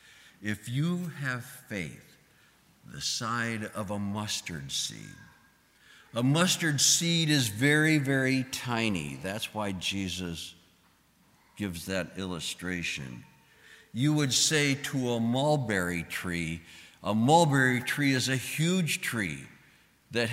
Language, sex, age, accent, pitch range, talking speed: English, male, 60-79, American, 95-140 Hz, 110 wpm